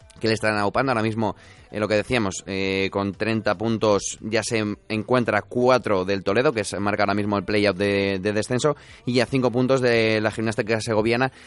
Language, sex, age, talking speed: Spanish, male, 20-39, 200 wpm